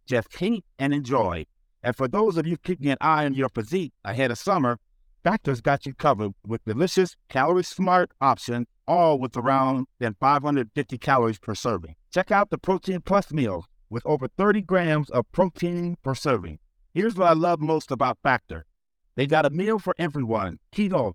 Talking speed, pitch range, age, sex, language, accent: 180 wpm, 130-180 Hz, 60-79, male, English, American